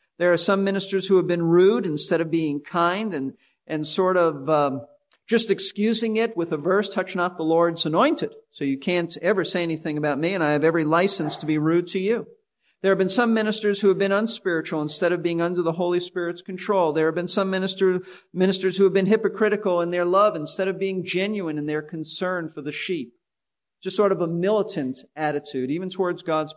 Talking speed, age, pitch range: 215 wpm, 50-69, 160-200 Hz